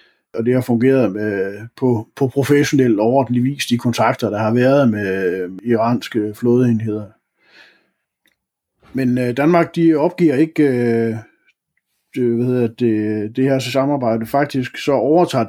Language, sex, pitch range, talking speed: Danish, male, 110-135 Hz, 130 wpm